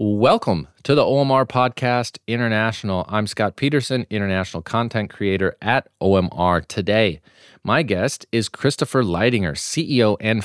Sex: male